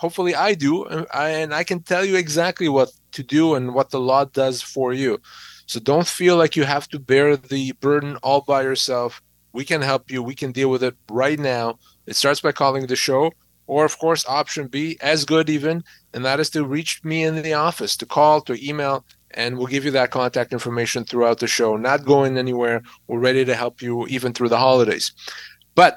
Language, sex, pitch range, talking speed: English, male, 125-160 Hz, 215 wpm